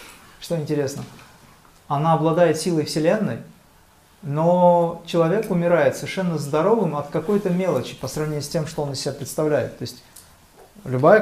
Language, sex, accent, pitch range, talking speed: Russian, male, native, 145-180 Hz, 140 wpm